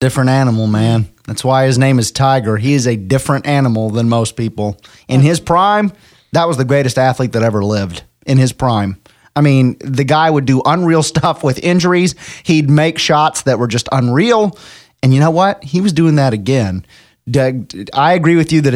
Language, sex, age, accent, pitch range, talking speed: English, male, 30-49, American, 105-140 Hz, 200 wpm